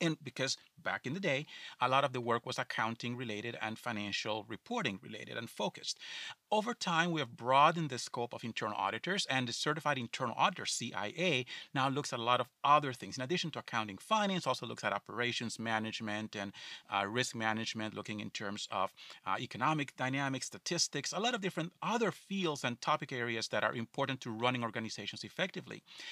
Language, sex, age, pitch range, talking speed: English, male, 30-49, 120-165 Hz, 190 wpm